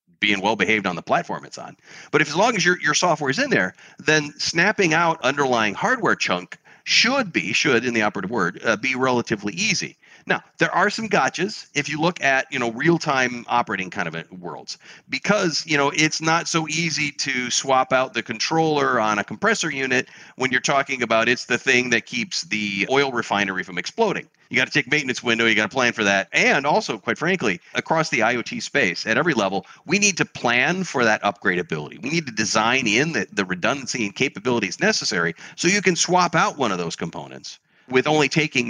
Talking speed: 210 wpm